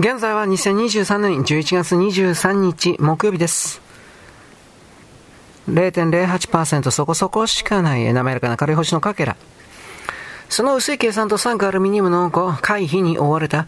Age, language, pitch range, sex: 40-59, Japanese, 155-195 Hz, male